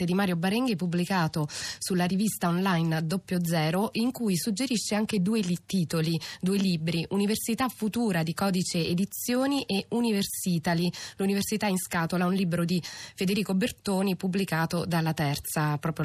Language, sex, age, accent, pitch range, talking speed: Italian, female, 20-39, native, 170-215 Hz, 140 wpm